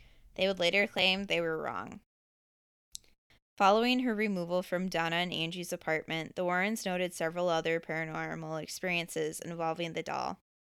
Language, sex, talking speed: English, female, 140 wpm